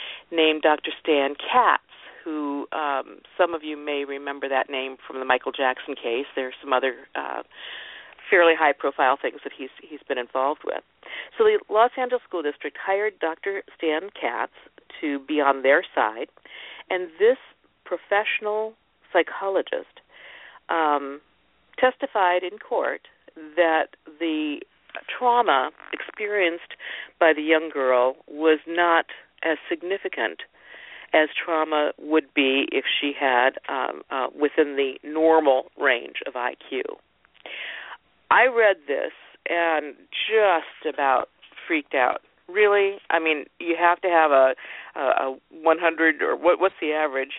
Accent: American